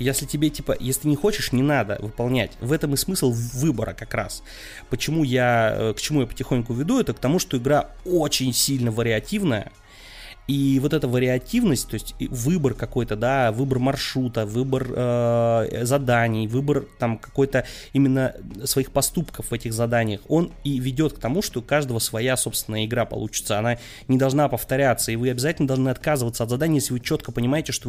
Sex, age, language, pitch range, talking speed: male, 20-39, Russian, 115-145 Hz, 175 wpm